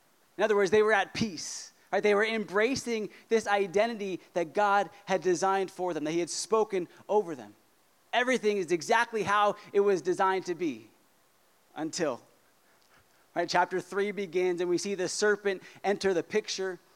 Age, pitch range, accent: 30-49, 185-225 Hz, American